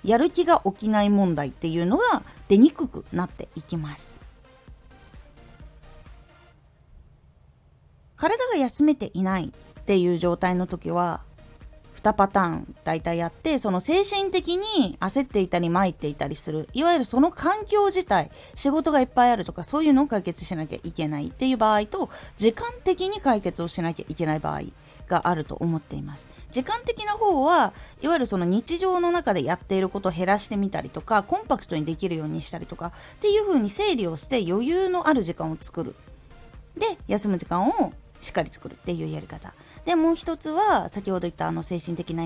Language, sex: Japanese, female